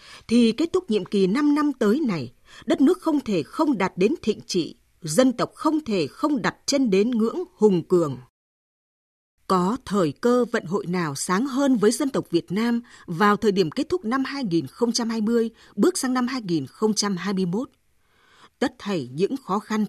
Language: Vietnamese